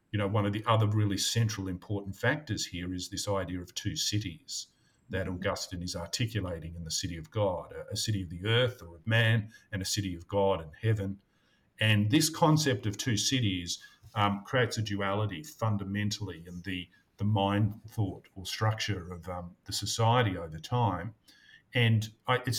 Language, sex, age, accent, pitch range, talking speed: English, male, 50-69, Australian, 95-115 Hz, 180 wpm